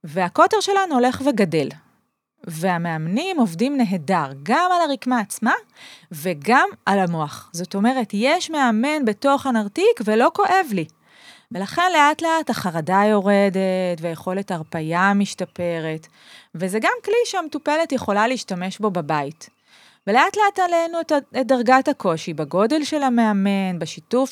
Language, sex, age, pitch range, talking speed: Hebrew, female, 30-49, 185-275 Hz, 120 wpm